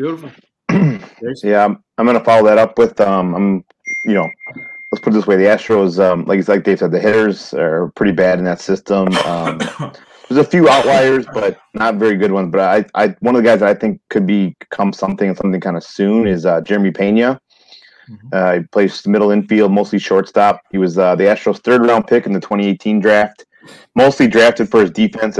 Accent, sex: American, male